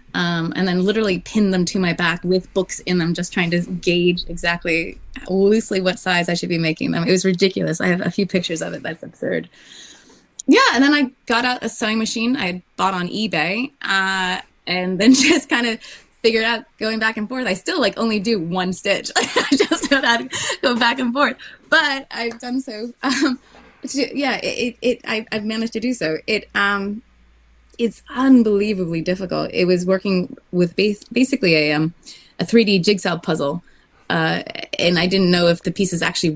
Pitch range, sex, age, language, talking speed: 170-225 Hz, female, 20-39, English, 200 wpm